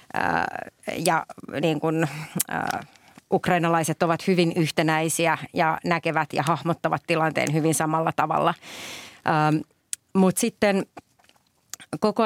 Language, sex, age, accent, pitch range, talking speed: Finnish, female, 30-49, native, 155-180 Hz, 105 wpm